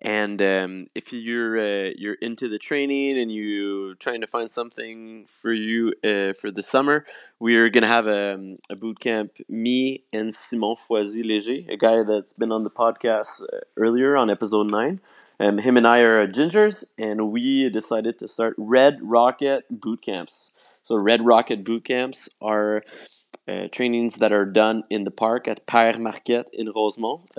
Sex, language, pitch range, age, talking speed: male, French, 105-120 Hz, 20-39, 175 wpm